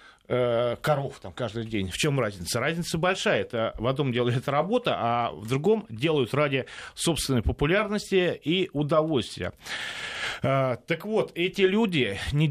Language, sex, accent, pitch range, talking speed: Russian, male, native, 130-190 Hz, 140 wpm